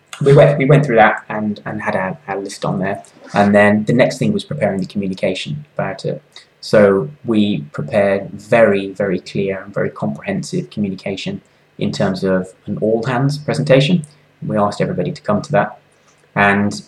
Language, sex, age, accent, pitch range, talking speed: English, male, 20-39, British, 100-150 Hz, 170 wpm